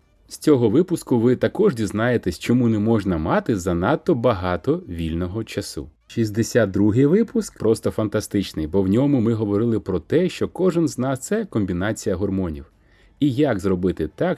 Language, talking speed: Ukrainian, 155 wpm